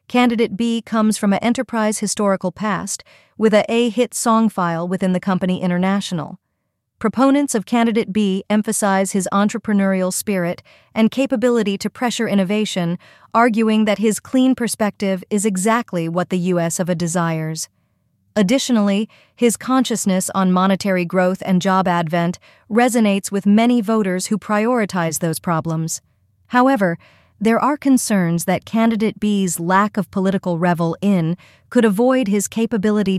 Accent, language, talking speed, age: American, English, 140 wpm, 40-59